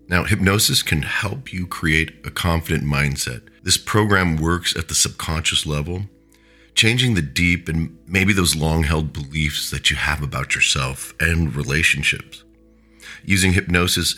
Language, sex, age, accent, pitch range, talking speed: English, male, 40-59, American, 75-95 Hz, 140 wpm